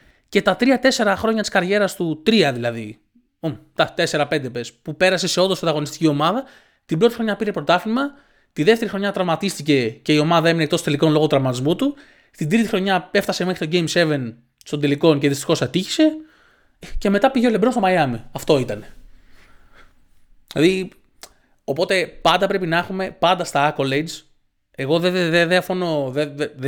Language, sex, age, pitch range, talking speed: Greek, male, 20-39, 140-185 Hz, 170 wpm